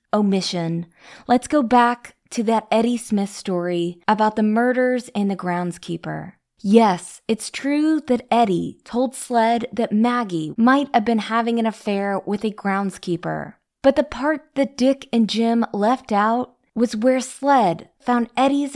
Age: 20-39